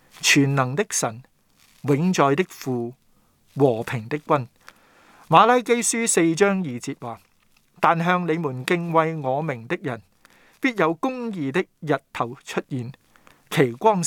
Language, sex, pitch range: Chinese, male, 130-175 Hz